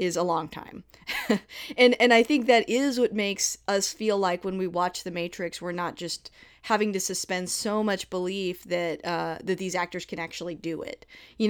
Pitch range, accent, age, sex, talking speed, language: 170-200 Hz, American, 20-39, female, 205 wpm, English